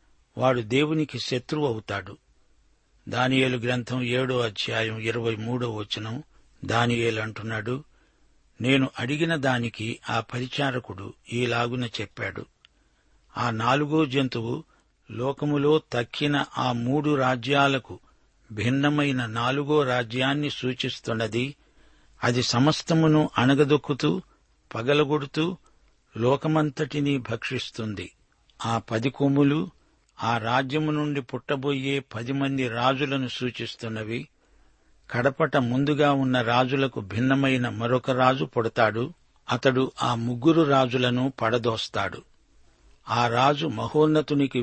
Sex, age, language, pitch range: male, 60-79, Telugu, 120-140 Hz